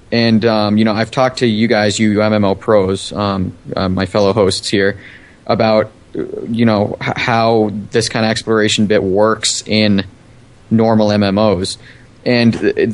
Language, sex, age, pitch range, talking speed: English, male, 20-39, 105-120 Hz, 160 wpm